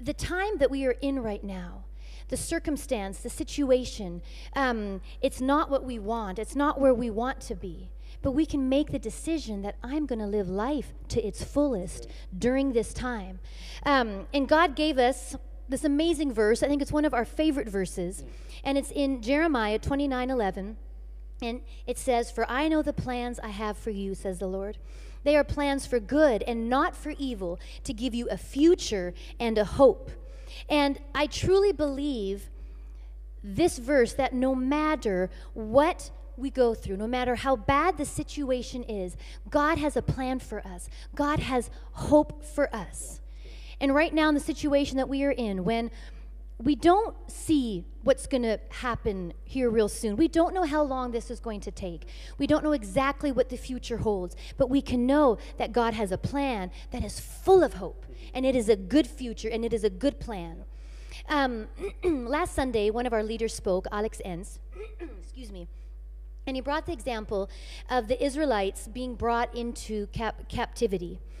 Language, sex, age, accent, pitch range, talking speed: German, female, 40-59, American, 215-285 Hz, 180 wpm